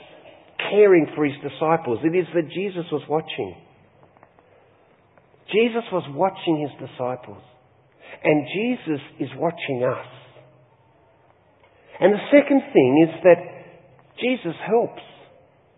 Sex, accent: male, Australian